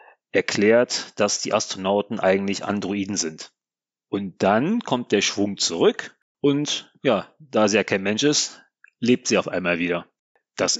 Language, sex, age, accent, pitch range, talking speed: German, male, 30-49, German, 100-140 Hz, 150 wpm